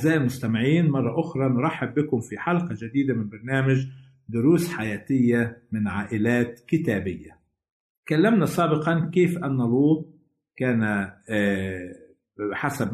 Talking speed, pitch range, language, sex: 105 wpm, 125-165 Hz, Arabic, male